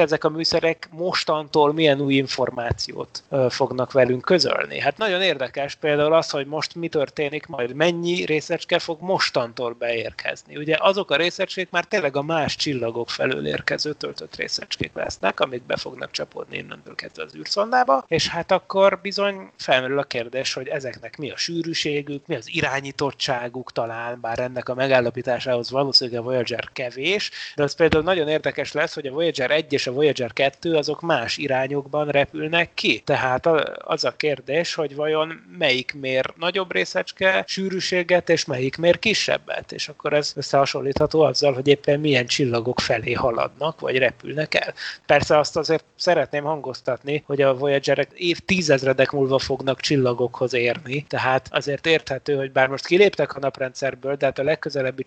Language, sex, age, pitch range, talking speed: Hungarian, male, 30-49, 130-160 Hz, 155 wpm